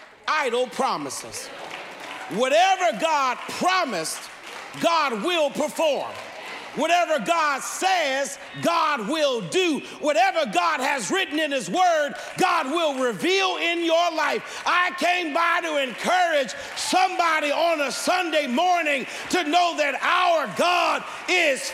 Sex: male